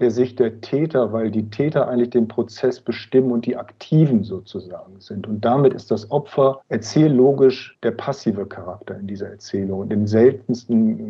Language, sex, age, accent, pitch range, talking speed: German, male, 50-69, German, 110-125 Hz, 175 wpm